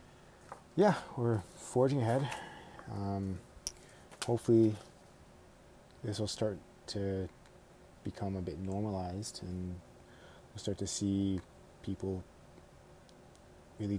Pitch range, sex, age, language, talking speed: 90-105 Hz, male, 20-39, English, 90 wpm